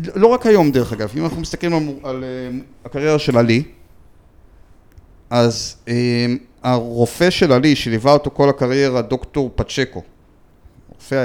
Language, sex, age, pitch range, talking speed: English, male, 30-49, 110-140 Hz, 140 wpm